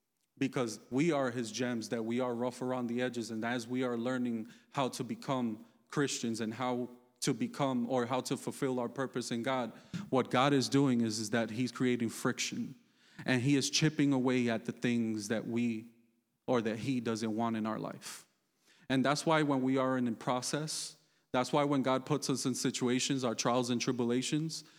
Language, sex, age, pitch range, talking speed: English, male, 30-49, 115-140 Hz, 195 wpm